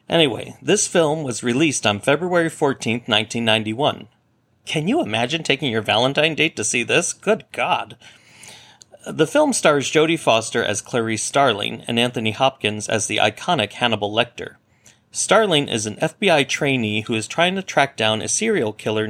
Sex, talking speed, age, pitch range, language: male, 160 wpm, 40-59, 110-145 Hz, English